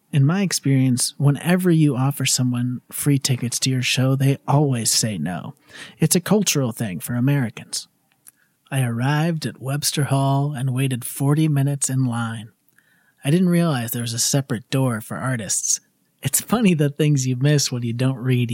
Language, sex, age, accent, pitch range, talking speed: English, male, 30-49, American, 120-145 Hz, 170 wpm